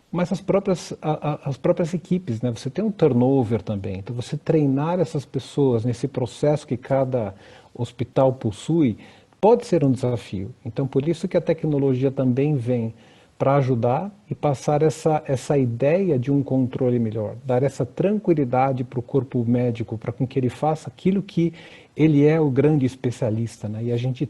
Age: 50-69